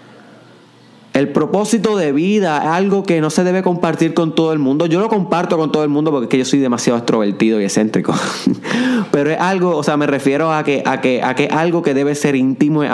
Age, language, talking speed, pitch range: 20-39, Spanish, 230 wpm, 110-150 Hz